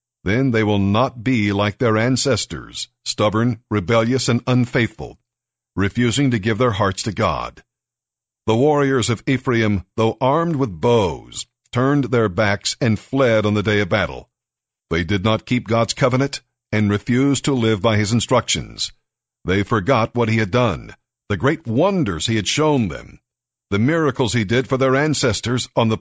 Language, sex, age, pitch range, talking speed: English, male, 50-69, 105-125 Hz, 165 wpm